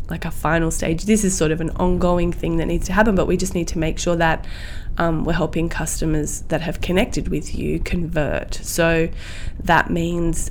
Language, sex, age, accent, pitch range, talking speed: English, female, 20-39, Australian, 165-190 Hz, 205 wpm